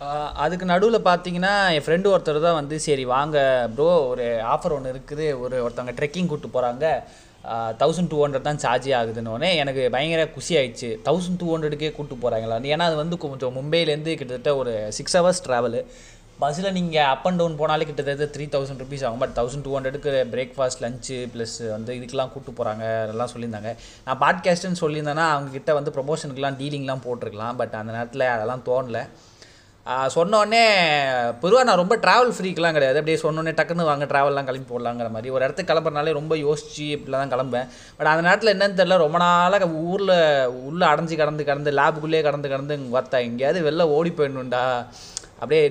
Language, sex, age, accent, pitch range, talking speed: Tamil, male, 20-39, native, 125-160 Hz, 165 wpm